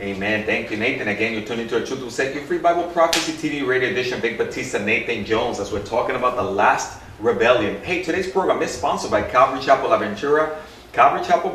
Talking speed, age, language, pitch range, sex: 215 wpm, 30-49, English, 115-160 Hz, male